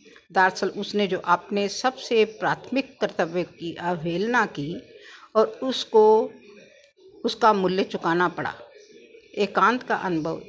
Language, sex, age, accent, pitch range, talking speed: Hindi, female, 60-79, native, 175-260 Hz, 115 wpm